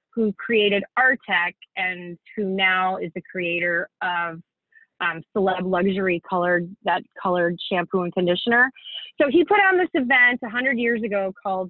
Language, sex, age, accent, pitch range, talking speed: English, female, 30-49, American, 185-245 Hz, 150 wpm